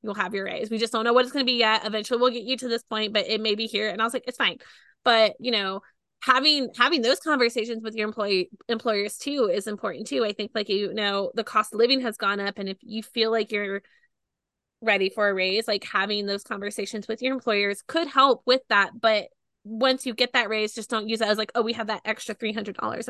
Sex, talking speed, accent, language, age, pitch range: female, 255 wpm, American, English, 20-39, 205-245 Hz